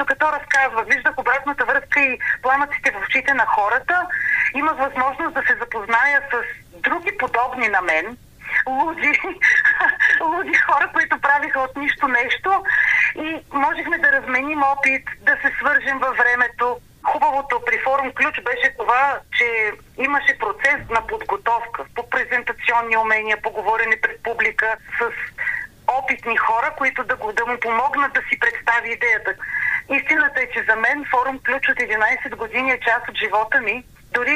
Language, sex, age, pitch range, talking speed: Bulgarian, female, 40-59, 240-320 Hz, 145 wpm